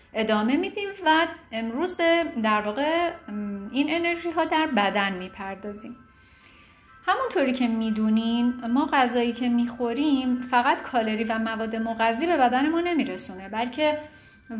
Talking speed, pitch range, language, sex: 125 wpm, 210-275 Hz, Persian, female